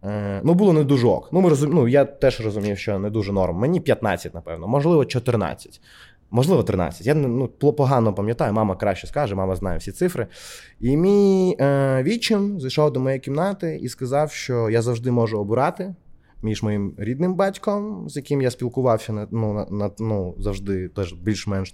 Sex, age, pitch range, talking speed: male, 20-39, 105-145 Hz, 170 wpm